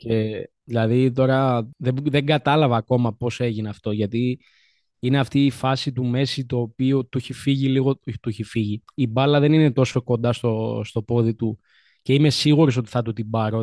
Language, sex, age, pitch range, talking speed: Greek, male, 20-39, 115-135 Hz, 185 wpm